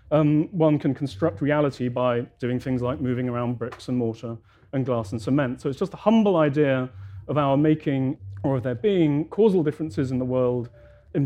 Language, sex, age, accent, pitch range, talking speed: English, male, 30-49, British, 125-155 Hz, 195 wpm